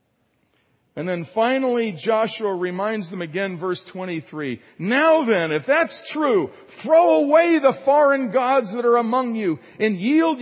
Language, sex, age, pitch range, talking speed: English, male, 50-69, 205-275 Hz, 145 wpm